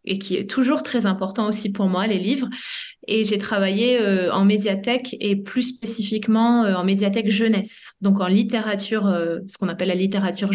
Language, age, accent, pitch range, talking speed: French, 20-39, French, 195-225 Hz, 190 wpm